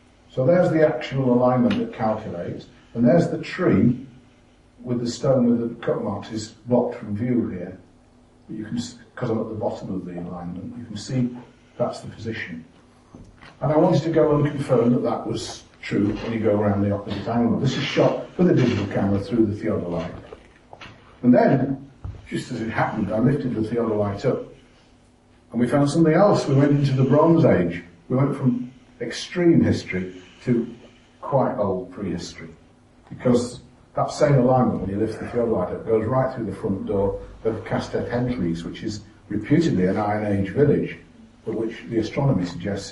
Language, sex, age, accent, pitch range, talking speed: English, male, 50-69, British, 100-130 Hz, 185 wpm